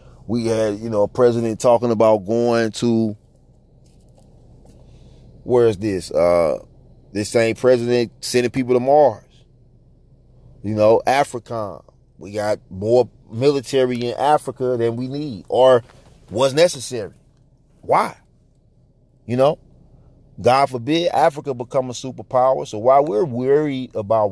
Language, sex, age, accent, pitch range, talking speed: English, male, 30-49, American, 115-135 Hz, 125 wpm